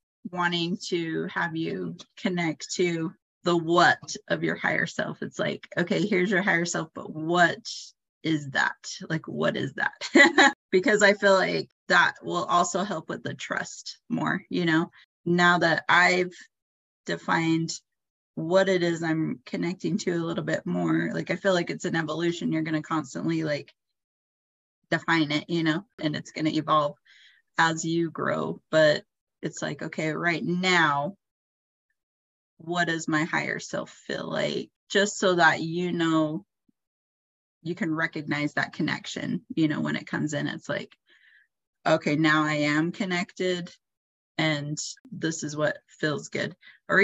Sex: female